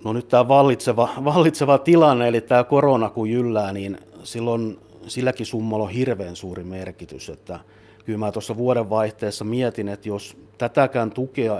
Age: 50-69